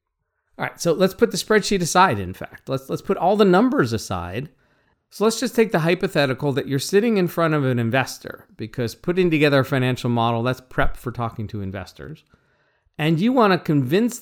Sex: male